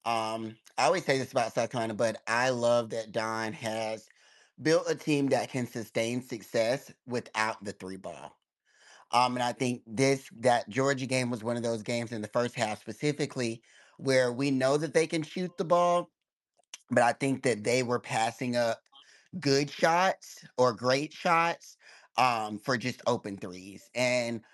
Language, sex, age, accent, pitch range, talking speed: English, male, 30-49, American, 110-140 Hz, 175 wpm